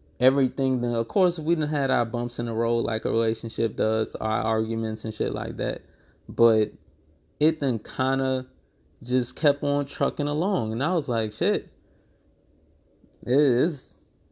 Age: 20-39